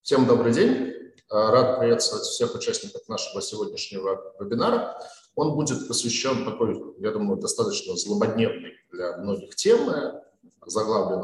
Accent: native